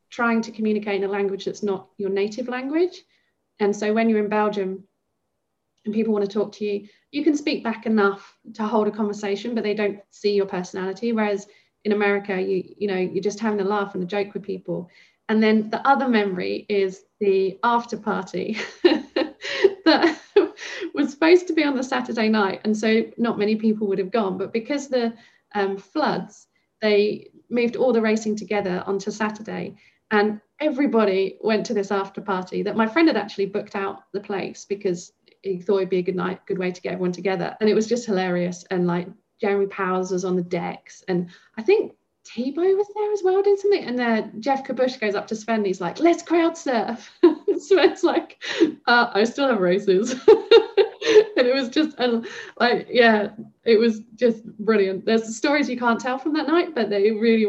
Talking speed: 195 wpm